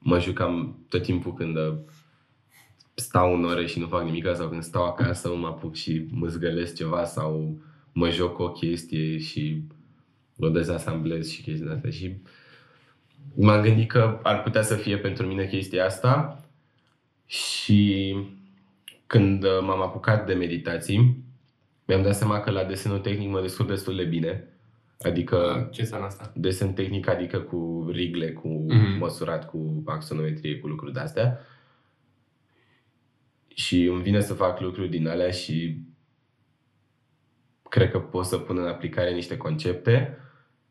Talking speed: 140 wpm